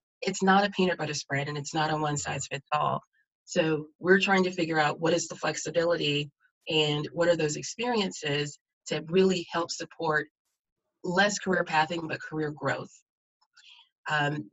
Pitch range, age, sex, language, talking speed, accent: 150-180 Hz, 30-49, female, English, 155 wpm, American